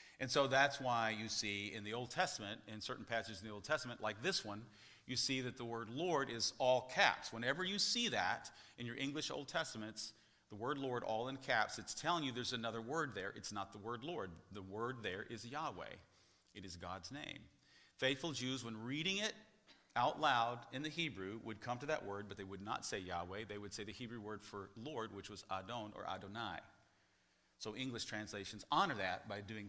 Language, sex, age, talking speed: English, male, 40-59, 215 wpm